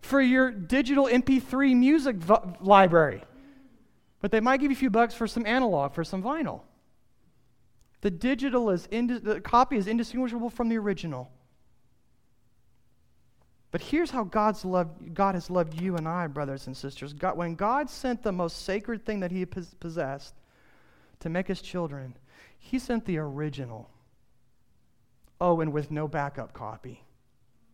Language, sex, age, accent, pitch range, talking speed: English, male, 40-59, American, 125-200 Hz, 145 wpm